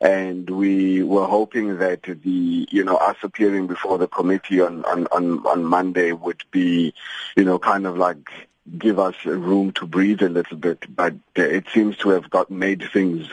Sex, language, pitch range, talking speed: male, English, 95-110 Hz, 185 wpm